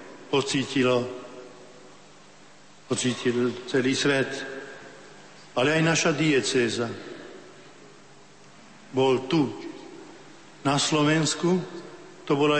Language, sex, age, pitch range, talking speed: Slovak, male, 60-79, 125-145 Hz, 65 wpm